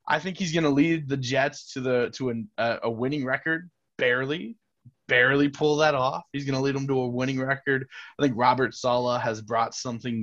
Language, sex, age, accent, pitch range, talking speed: English, male, 20-39, American, 120-145 Hz, 210 wpm